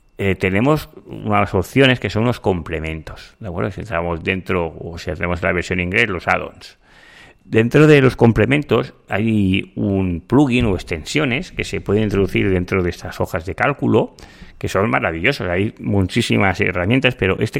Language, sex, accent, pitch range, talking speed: Spanish, male, Spanish, 95-120 Hz, 165 wpm